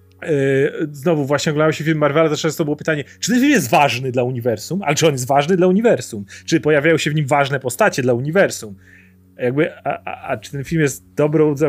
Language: Polish